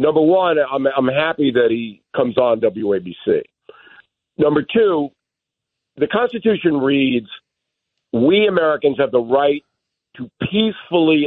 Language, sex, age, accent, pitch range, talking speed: English, male, 50-69, American, 150-230 Hz, 115 wpm